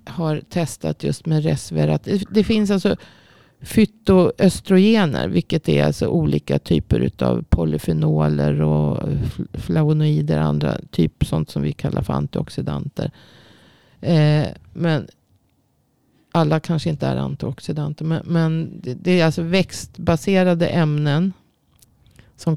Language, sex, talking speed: Swedish, female, 110 wpm